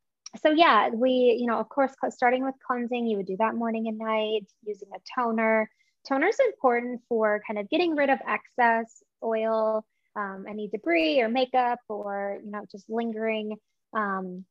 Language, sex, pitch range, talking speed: English, female, 205-245 Hz, 175 wpm